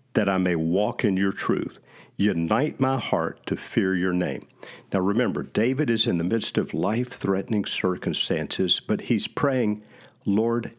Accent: American